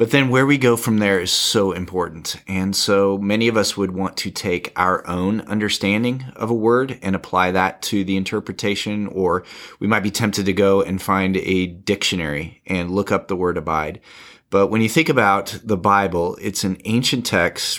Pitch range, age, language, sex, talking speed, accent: 95-110 Hz, 30-49, English, male, 200 wpm, American